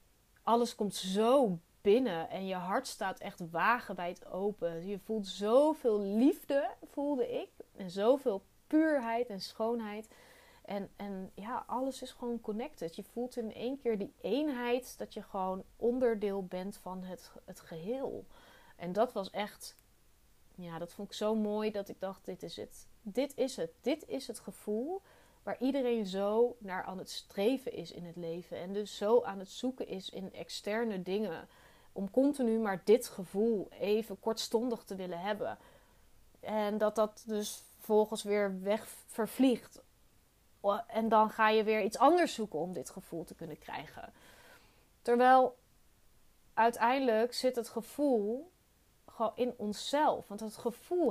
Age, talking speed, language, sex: 30-49, 155 wpm, Dutch, female